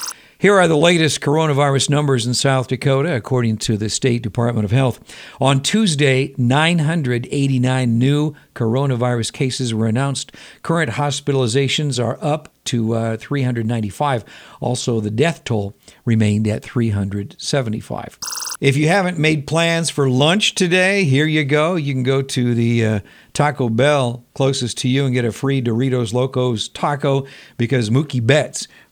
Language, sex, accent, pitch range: English, male, American, 120-150 Hz